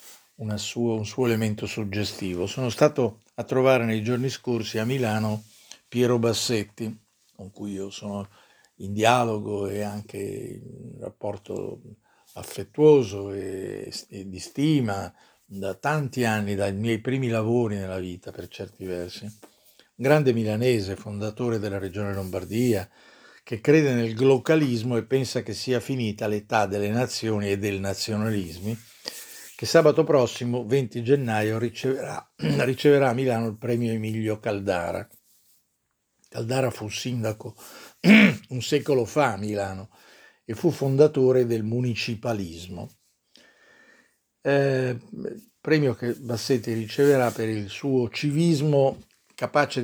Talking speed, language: 120 wpm, Italian